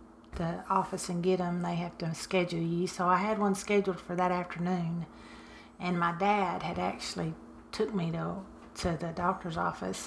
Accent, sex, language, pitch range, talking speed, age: American, female, English, 170-195 Hz, 180 wpm, 40-59